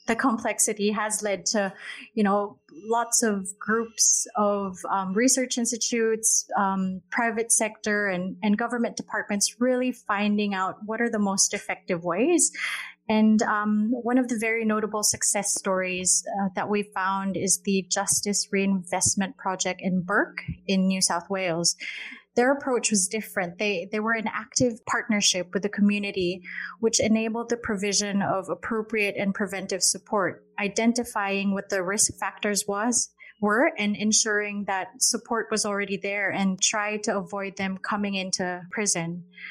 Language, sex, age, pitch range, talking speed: English, female, 30-49, 195-220 Hz, 145 wpm